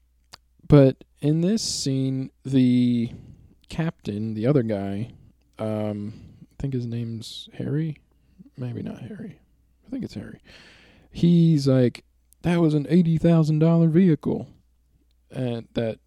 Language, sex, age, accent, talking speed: English, male, 20-39, American, 115 wpm